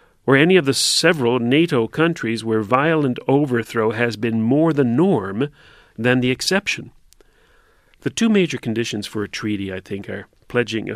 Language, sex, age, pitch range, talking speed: English, male, 40-59, 105-130 Hz, 160 wpm